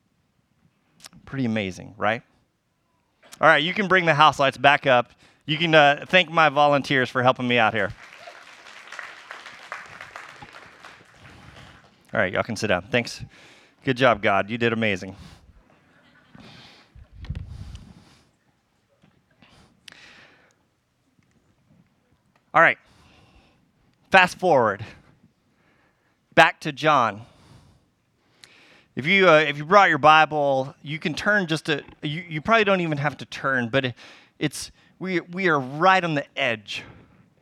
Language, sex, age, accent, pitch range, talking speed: English, male, 30-49, American, 125-175 Hz, 120 wpm